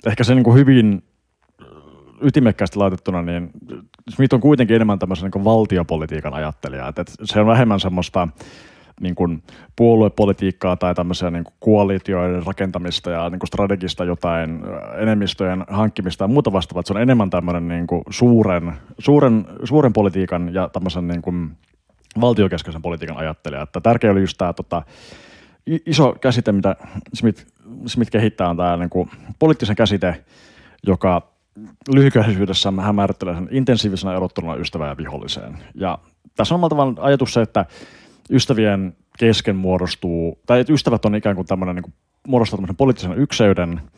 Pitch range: 90-110 Hz